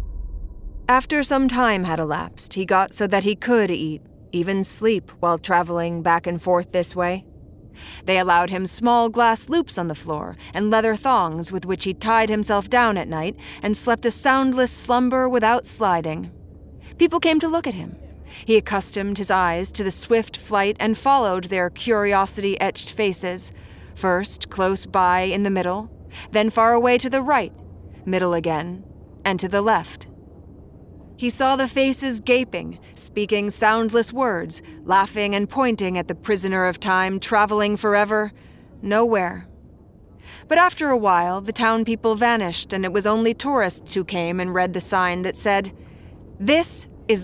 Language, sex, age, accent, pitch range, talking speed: English, female, 30-49, American, 180-235 Hz, 160 wpm